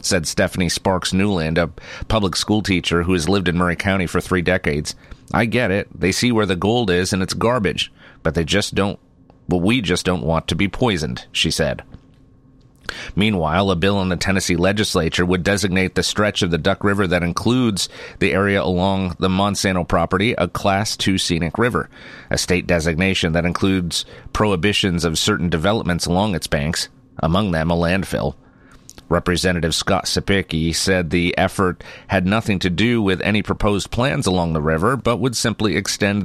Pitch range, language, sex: 85-100 Hz, English, male